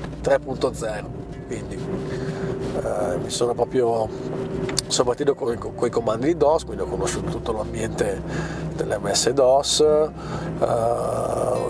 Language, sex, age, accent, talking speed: Italian, male, 40-59, native, 115 wpm